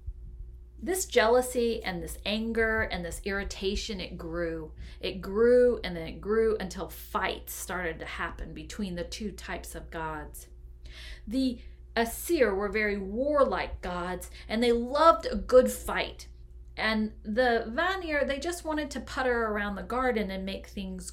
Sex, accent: female, American